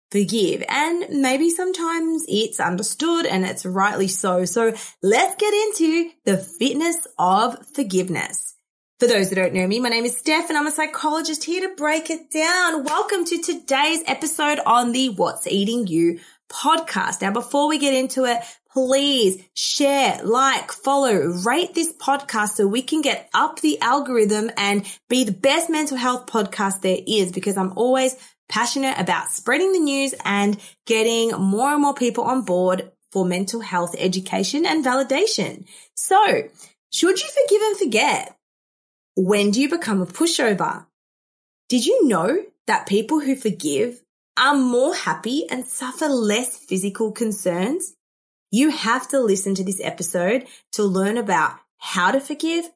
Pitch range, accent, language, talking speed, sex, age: 200-310 Hz, Australian, English, 155 wpm, female, 20-39